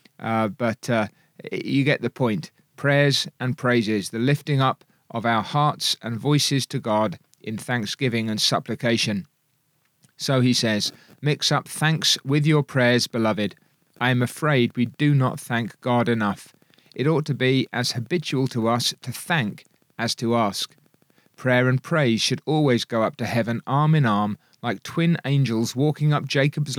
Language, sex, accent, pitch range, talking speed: English, male, British, 115-150 Hz, 165 wpm